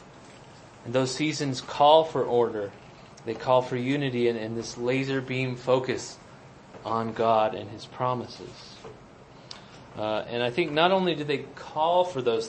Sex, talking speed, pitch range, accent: male, 155 wpm, 120-140 Hz, American